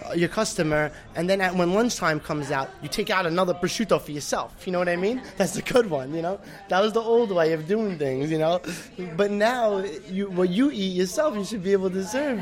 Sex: male